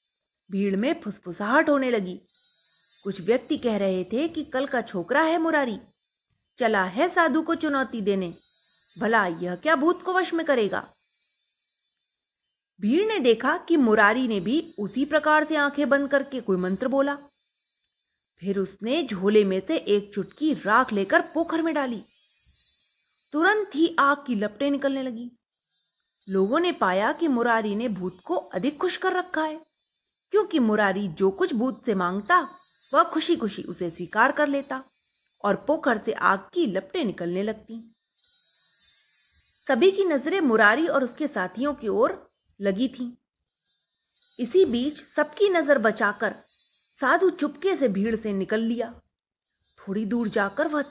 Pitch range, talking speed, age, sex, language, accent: 205-300 Hz, 150 wpm, 30-49, female, Hindi, native